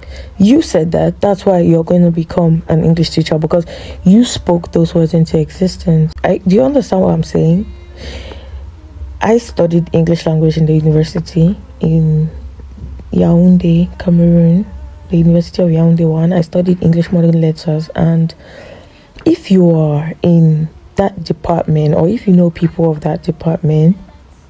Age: 20-39